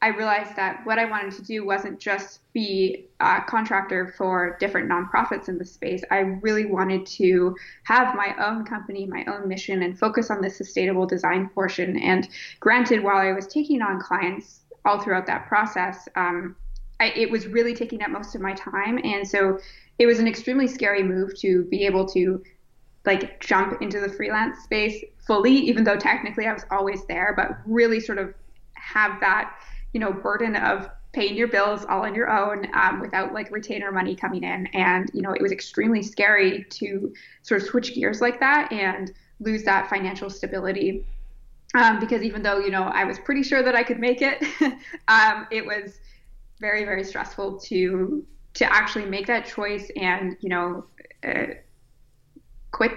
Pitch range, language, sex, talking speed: 190-225 Hz, English, female, 180 wpm